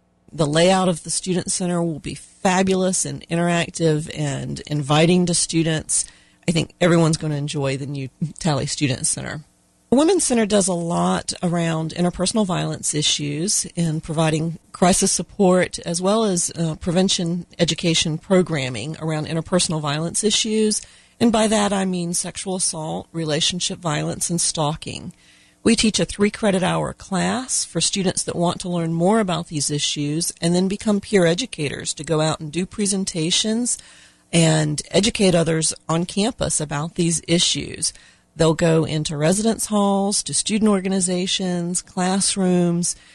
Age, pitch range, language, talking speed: 40-59, 155-190 Hz, English, 145 wpm